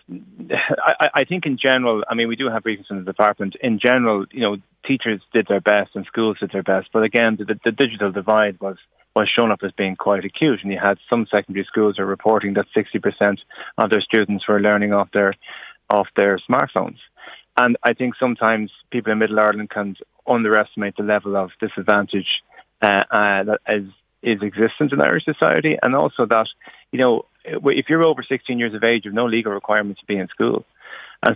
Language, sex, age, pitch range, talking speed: English, male, 20-39, 100-115 Hz, 205 wpm